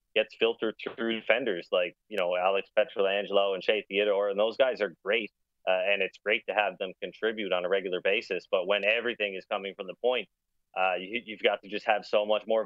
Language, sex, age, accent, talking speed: English, male, 30-49, American, 220 wpm